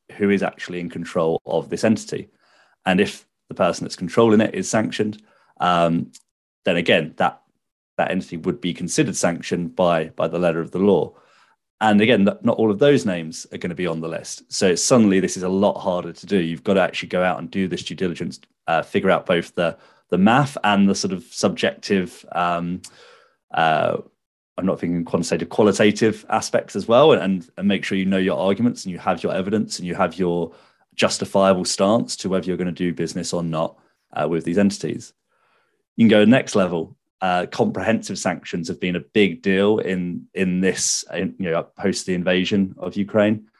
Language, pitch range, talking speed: English, 85-100 Hz, 205 wpm